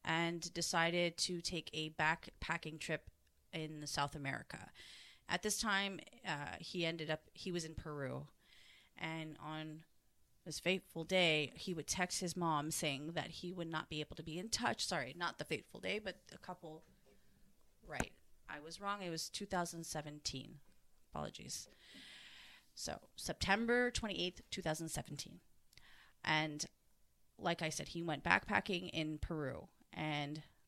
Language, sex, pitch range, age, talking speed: English, female, 150-180 Hz, 30-49, 145 wpm